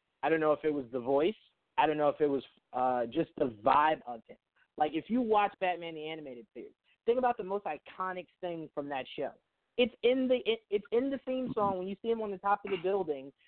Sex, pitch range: male, 150-195 Hz